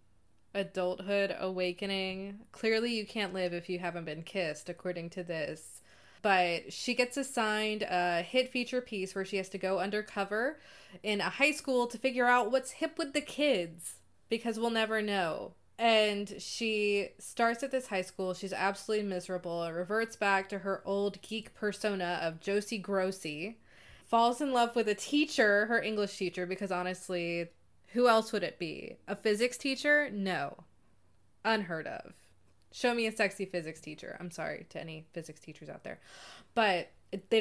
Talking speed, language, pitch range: 165 wpm, English, 185-225 Hz